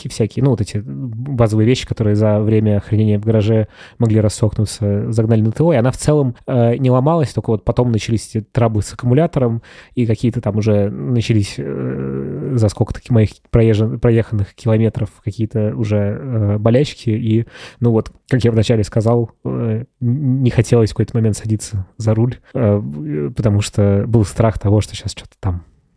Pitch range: 105-120 Hz